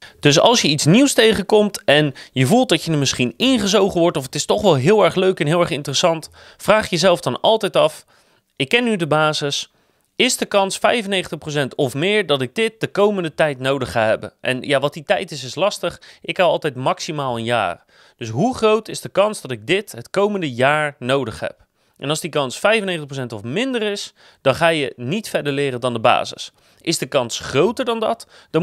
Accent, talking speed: Dutch, 220 wpm